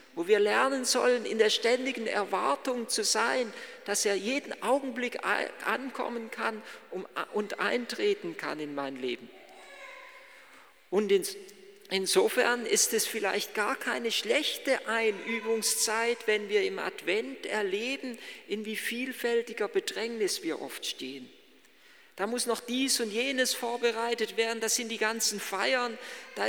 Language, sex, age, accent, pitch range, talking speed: German, male, 50-69, German, 210-280 Hz, 130 wpm